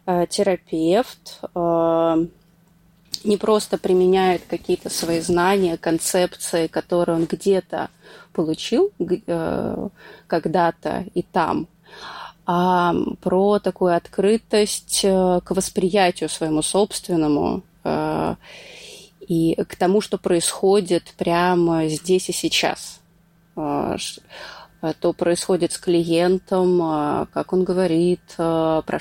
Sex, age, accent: female, 20-39, native